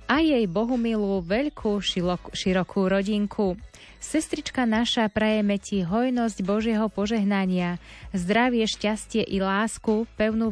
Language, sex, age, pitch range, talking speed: Slovak, female, 20-39, 185-225 Hz, 105 wpm